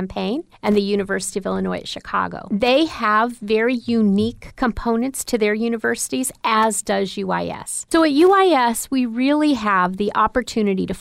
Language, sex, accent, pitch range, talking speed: English, female, American, 205-255 Hz, 155 wpm